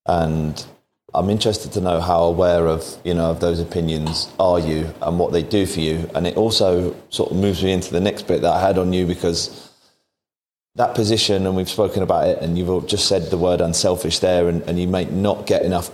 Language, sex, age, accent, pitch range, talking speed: English, male, 30-49, British, 85-90 Hz, 230 wpm